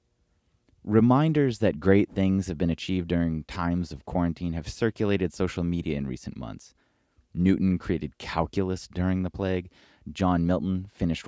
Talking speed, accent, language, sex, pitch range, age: 145 wpm, American, English, male, 75-100 Hz, 30-49